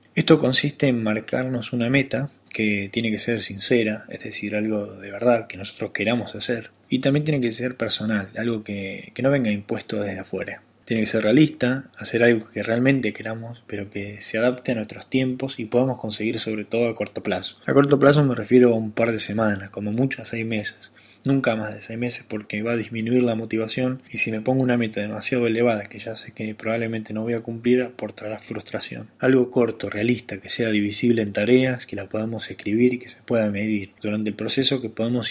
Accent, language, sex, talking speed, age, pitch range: Argentinian, Spanish, male, 210 wpm, 20-39, 105-125 Hz